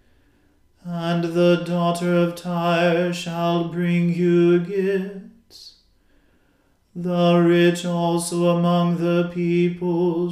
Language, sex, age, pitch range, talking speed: English, male, 40-59, 170-175 Hz, 85 wpm